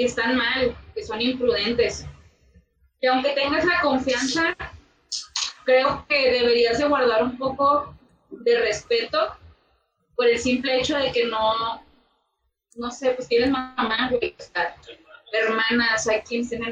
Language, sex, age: Spanish, female, 20-39